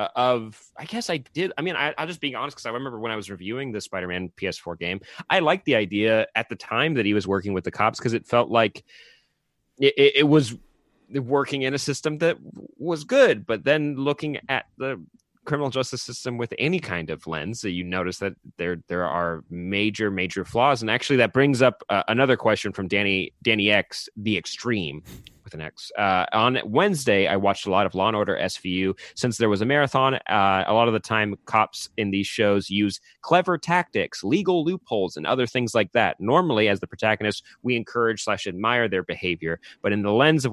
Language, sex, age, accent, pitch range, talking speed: English, male, 30-49, American, 100-135 Hz, 205 wpm